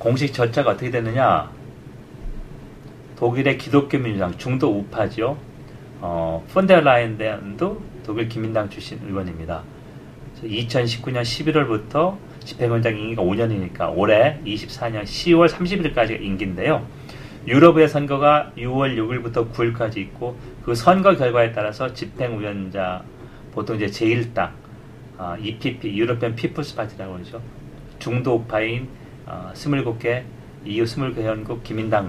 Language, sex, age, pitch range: Korean, male, 40-59, 105-135 Hz